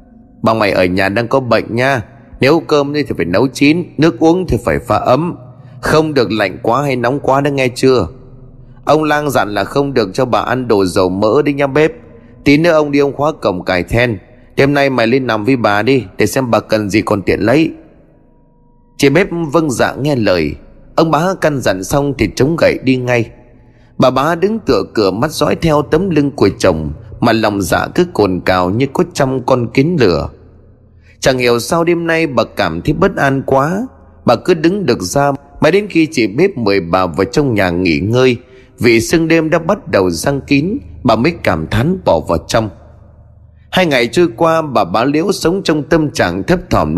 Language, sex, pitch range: Vietnamese, male, 110-155 Hz